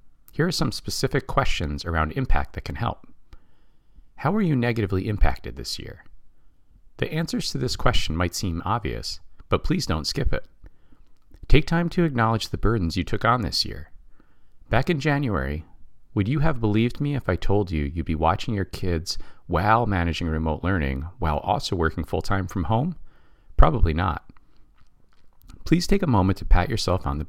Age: 40-59